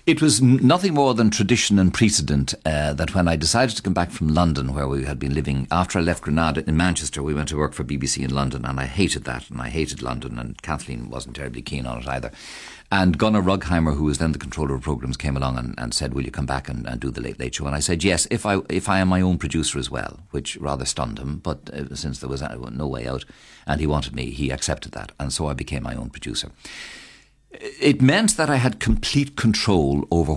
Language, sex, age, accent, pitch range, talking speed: English, male, 60-79, Irish, 70-95 Hz, 250 wpm